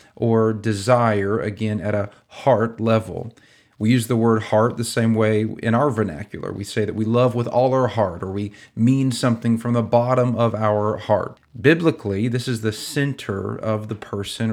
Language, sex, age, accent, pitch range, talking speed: English, male, 40-59, American, 105-125 Hz, 185 wpm